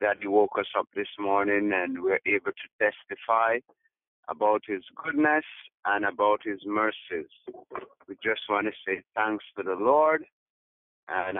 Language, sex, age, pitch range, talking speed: English, male, 50-69, 100-125 Hz, 155 wpm